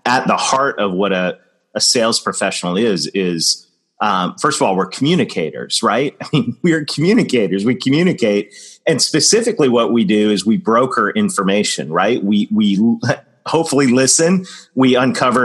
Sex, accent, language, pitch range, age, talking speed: male, American, English, 95-125 Hz, 30-49, 155 wpm